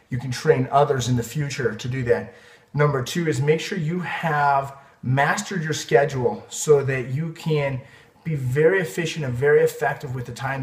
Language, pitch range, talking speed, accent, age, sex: English, 130-165 Hz, 185 wpm, American, 30-49, male